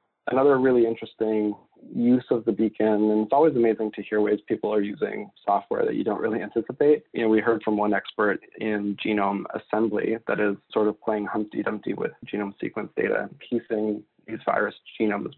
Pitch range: 105-120 Hz